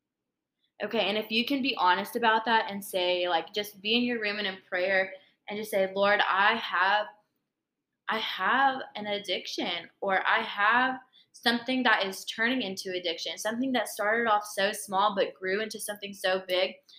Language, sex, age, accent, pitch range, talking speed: English, female, 20-39, American, 200-260 Hz, 180 wpm